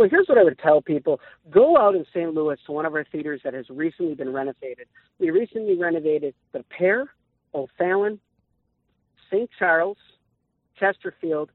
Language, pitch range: English, 140-190 Hz